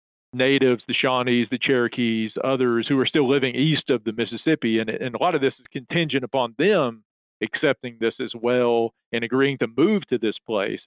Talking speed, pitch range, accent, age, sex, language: 195 wpm, 110-130 Hz, American, 40-59, male, English